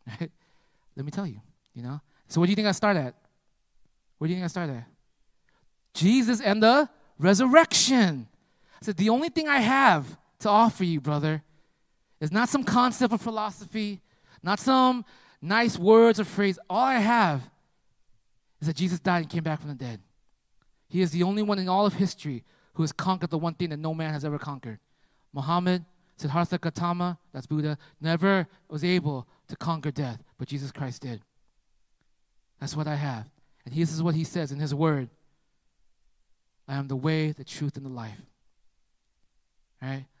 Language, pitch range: English, 150-195 Hz